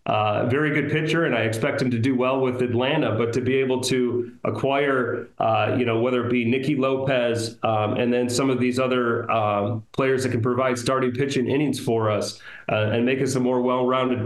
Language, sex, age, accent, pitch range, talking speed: English, male, 30-49, American, 115-130 Hz, 215 wpm